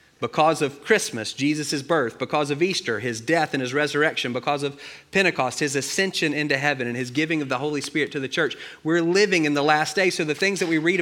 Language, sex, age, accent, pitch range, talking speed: English, male, 30-49, American, 115-165 Hz, 230 wpm